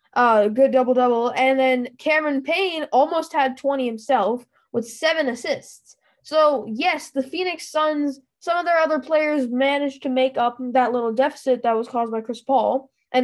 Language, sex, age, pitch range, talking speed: English, female, 10-29, 250-305 Hz, 170 wpm